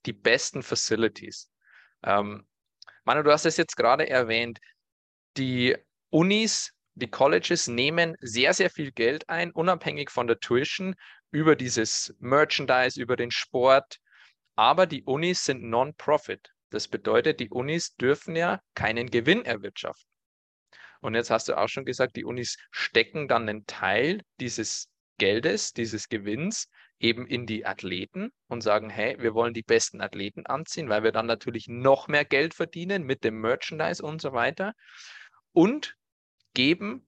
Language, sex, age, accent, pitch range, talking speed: German, male, 20-39, German, 115-160 Hz, 145 wpm